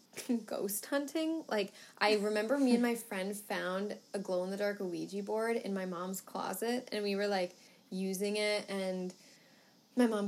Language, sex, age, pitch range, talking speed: English, female, 10-29, 190-225 Hz, 160 wpm